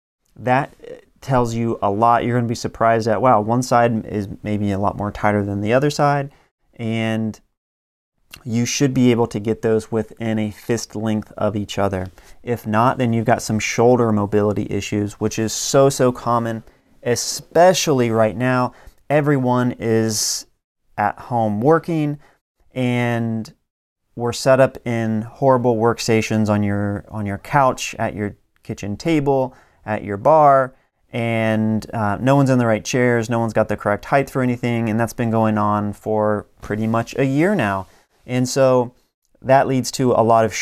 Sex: male